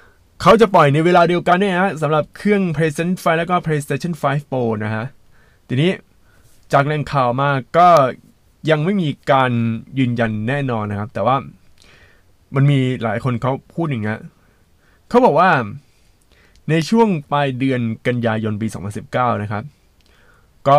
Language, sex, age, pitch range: Thai, male, 20-39, 115-150 Hz